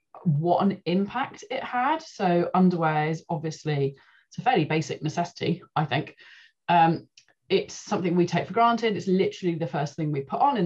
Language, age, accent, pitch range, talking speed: English, 20-39, British, 150-180 Hz, 180 wpm